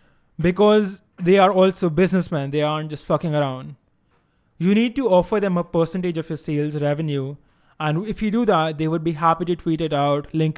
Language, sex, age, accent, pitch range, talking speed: English, male, 20-39, Indian, 145-175 Hz, 200 wpm